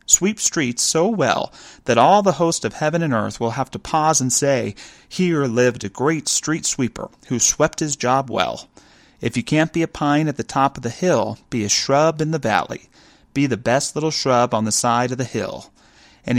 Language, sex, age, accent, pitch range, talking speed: English, male, 30-49, American, 110-140 Hz, 215 wpm